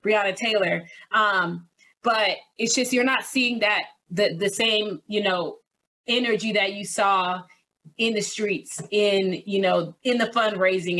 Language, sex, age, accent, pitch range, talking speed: English, female, 20-39, American, 195-235 Hz, 155 wpm